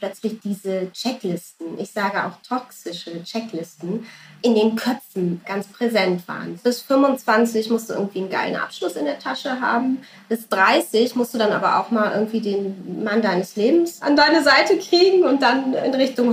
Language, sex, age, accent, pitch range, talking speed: German, female, 20-39, German, 220-290 Hz, 175 wpm